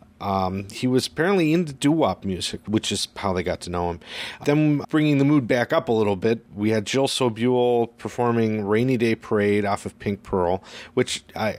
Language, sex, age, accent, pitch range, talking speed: English, male, 40-59, American, 100-125 Hz, 195 wpm